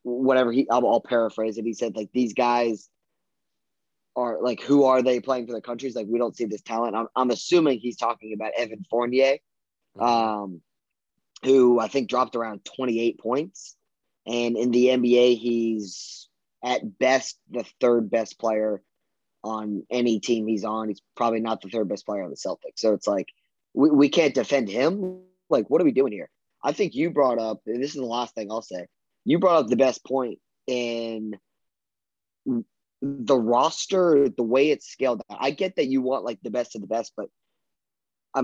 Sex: male